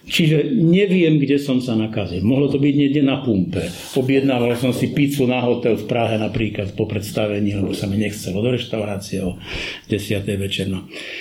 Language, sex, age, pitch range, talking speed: Slovak, male, 50-69, 105-140 Hz, 170 wpm